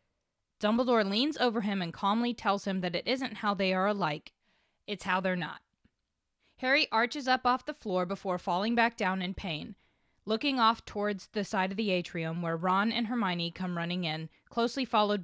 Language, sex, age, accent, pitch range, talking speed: English, female, 20-39, American, 185-230 Hz, 190 wpm